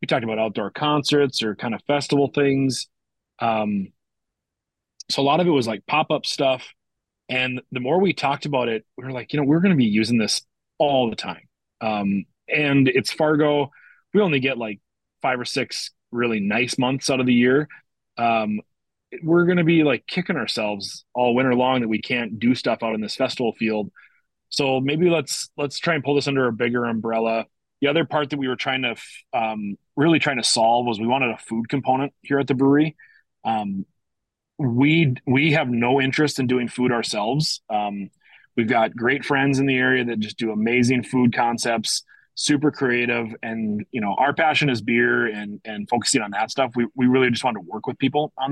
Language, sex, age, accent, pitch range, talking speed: English, male, 30-49, American, 115-145 Hz, 205 wpm